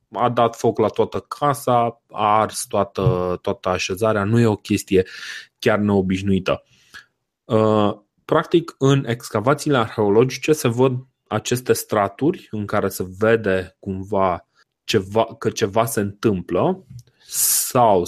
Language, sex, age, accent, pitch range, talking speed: Romanian, male, 20-39, native, 95-120 Hz, 120 wpm